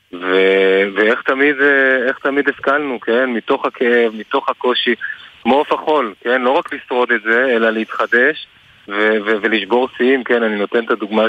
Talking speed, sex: 165 wpm, male